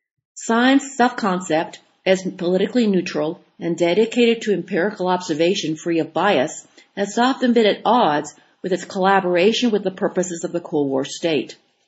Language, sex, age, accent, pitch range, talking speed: English, female, 50-69, American, 165-215 Hz, 150 wpm